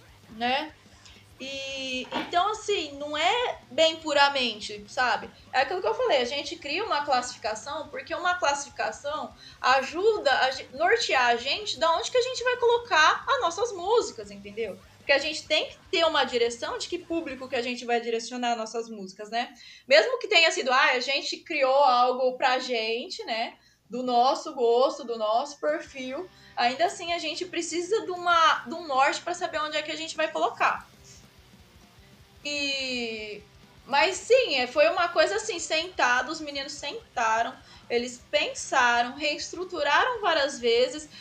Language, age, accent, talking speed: Portuguese, 20-39, Brazilian, 165 wpm